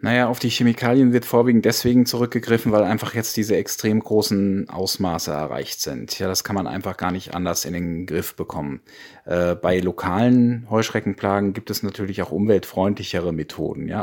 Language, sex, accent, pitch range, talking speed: German, male, German, 95-120 Hz, 170 wpm